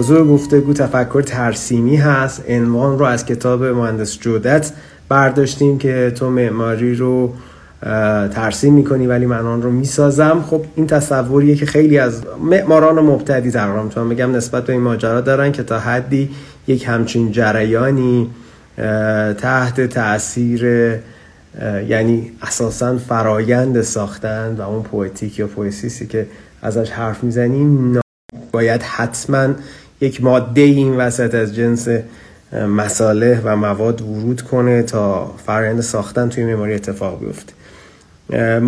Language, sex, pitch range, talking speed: Persian, male, 115-140 Hz, 125 wpm